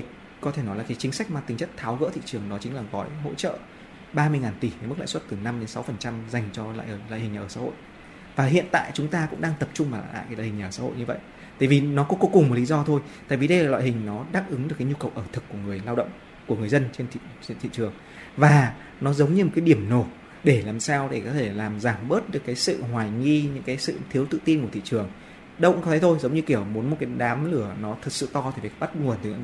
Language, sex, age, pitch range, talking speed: Vietnamese, male, 20-39, 115-150 Hz, 310 wpm